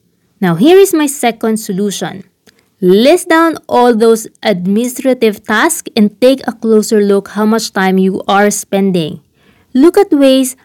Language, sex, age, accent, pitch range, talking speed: English, female, 20-39, Filipino, 200-255 Hz, 145 wpm